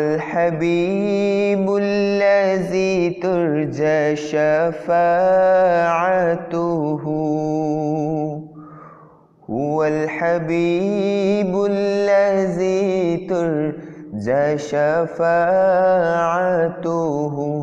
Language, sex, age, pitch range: English, male, 20-39, 125-175 Hz